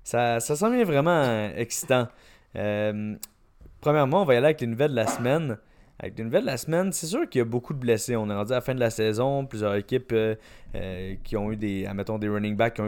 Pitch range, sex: 110-130 Hz, male